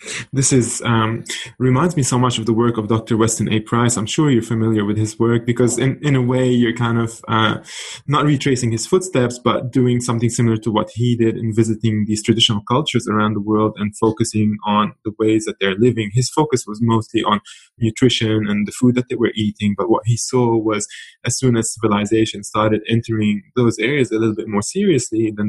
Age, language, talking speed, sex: 20-39, English, 215 wpm, male